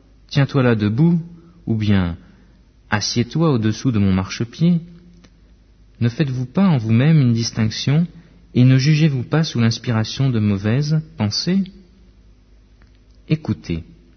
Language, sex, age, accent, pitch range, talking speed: French, male, 50-69, French, 105-155 Hz, 115 wpm